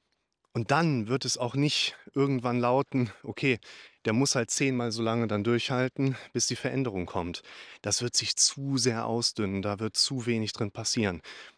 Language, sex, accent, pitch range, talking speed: German, male, German, 105-130 Hz, 170 wpm